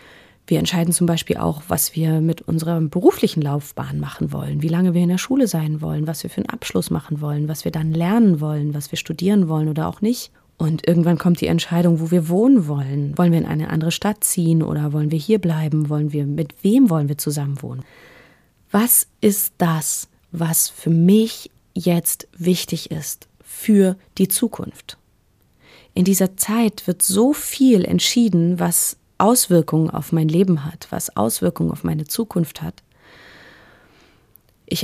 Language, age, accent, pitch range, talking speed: German, 30-49, German, 155-195 Hz, 175 wpm